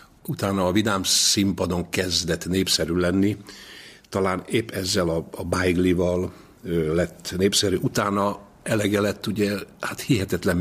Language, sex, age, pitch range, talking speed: Hungarian, male, 60-79, 85-100 Hz, 120 wpm